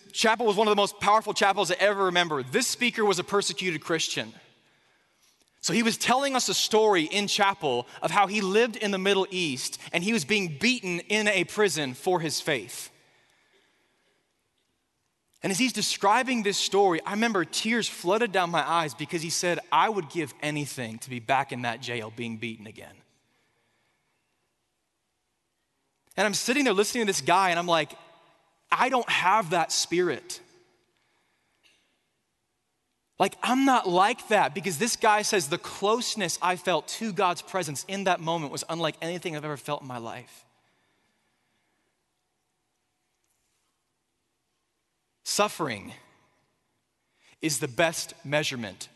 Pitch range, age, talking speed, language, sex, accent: 155-210 Hz, 20-39, 150 wpm, English, male, American